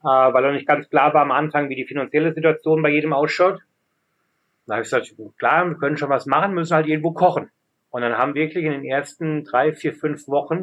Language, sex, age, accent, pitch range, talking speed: German, male, 30-49, German, 140-160 Hz, 225 wpm